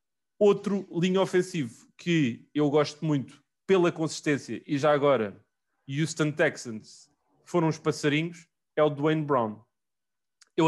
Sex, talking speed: male, 125 wpm